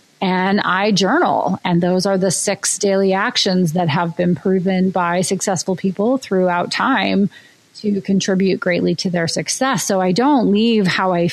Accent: American